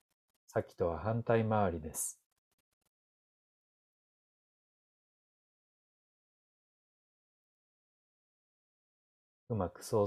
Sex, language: male, Japanese